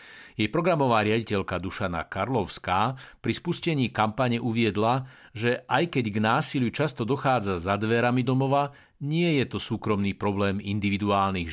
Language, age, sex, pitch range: Slovak, 50-69, male, 100-130 Hz